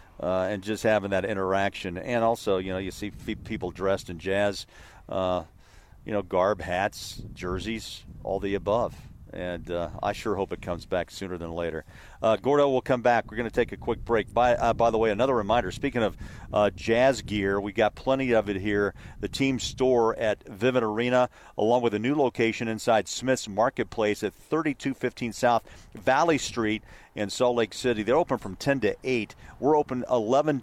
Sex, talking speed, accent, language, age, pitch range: male, 190 wpm, American, English, 40-59, 100-130 Hz